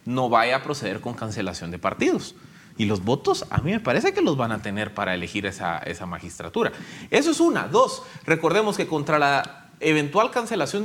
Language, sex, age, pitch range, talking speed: Spanish, male, 30-49, 140-215 Hz, 195 wpm